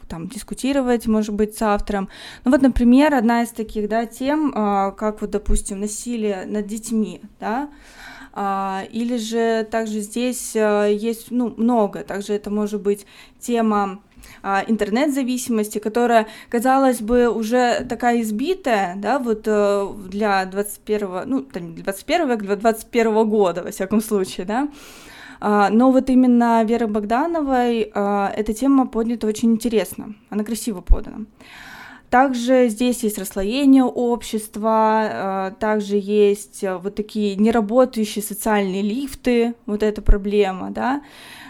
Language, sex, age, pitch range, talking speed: Russian, female, 20-39, 210-250 Hz, 115 wpm